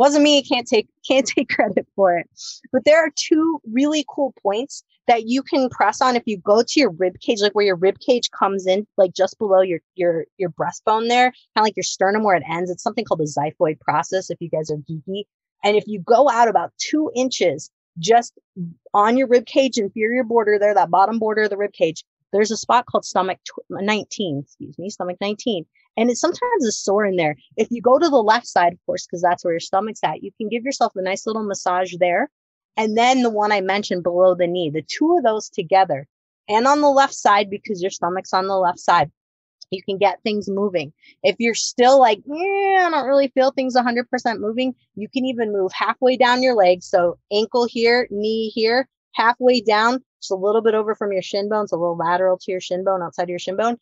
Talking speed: 230 wpm